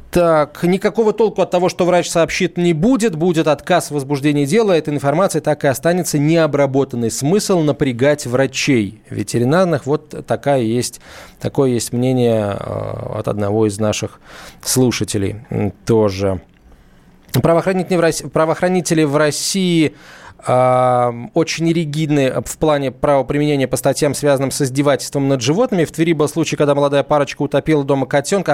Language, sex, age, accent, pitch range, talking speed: Russian, male, 20-39, native, 130-165 Hz, 130 wpm